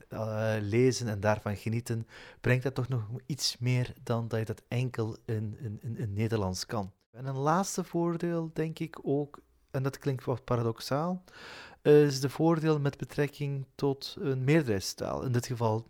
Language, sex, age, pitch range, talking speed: Dutch, male, 30-49, 110-135 Hz, 170 wpm